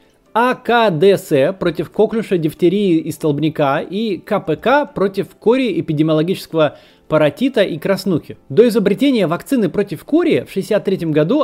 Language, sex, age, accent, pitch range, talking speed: Russian, male, 20-39, native, 155-215 Hz, 115 wpm